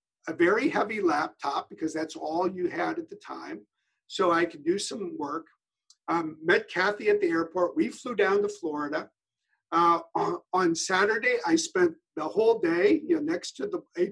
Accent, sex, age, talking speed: American, male, 50-69, 175 wpm